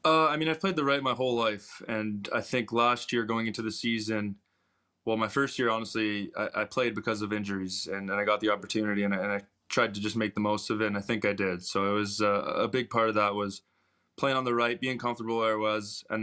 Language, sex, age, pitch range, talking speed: English, male, 20-39, 105-115 Hz, 265 wpm